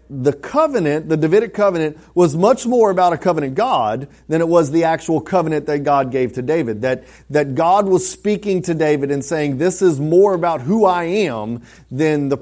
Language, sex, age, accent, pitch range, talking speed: English, male, 30-49, American, 135-170 Hz, 200 wpm